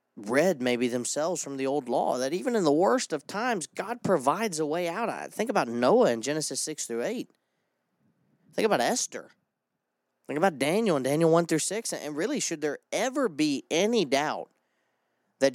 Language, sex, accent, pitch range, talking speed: English, male, American, 110-175 Hz, 180 wpm